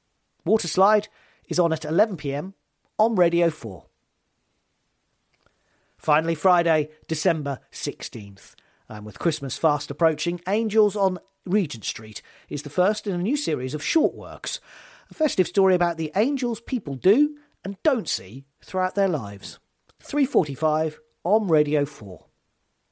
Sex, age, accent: male, 40-59, British